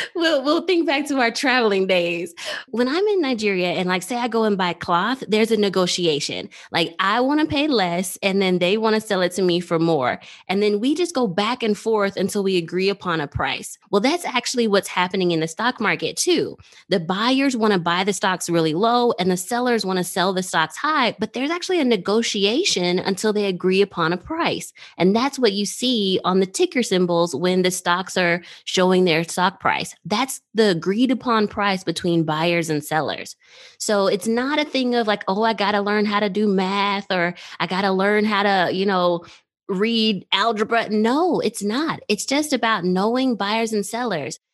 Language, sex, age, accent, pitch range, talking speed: English, female, 20-39, American, 180-240 Hz, 210 wpm